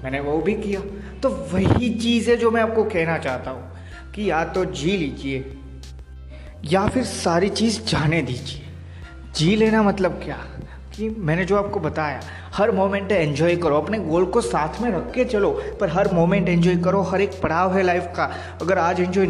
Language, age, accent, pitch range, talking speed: Hindi, 20-39, native, 140-205 Hz, 185 wpm